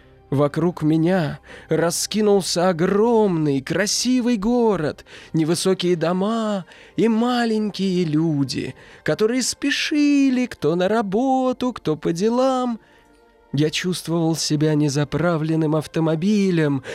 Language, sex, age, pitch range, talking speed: Russian, male, 20-39, 145-190 Hz, 85 wpm